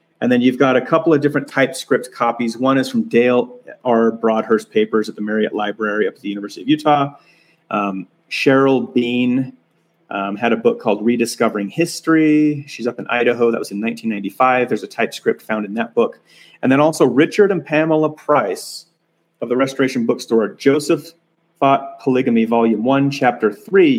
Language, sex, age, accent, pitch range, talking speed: English, male, 30-49, American, 115-155 Hz, 175 wpm